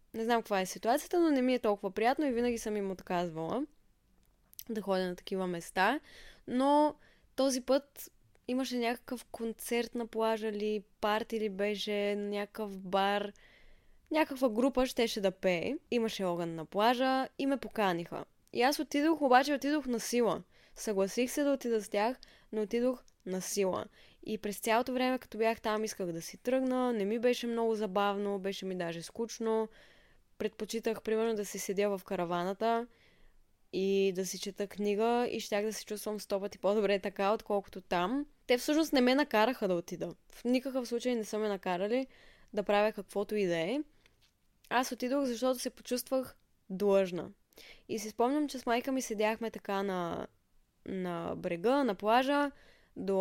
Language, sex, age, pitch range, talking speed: Bulgarian, female, 20-39, 200-255 Hz, 165 wpm